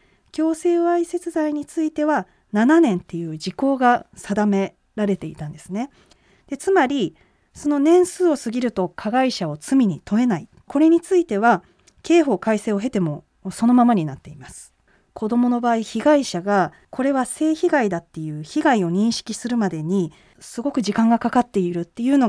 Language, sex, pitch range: Japanese, female, 185-290 Hz